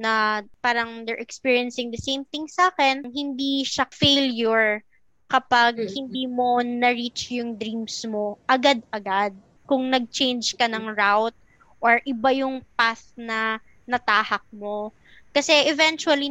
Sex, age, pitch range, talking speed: female, 20-39, 220-265 Hz, 125 wpm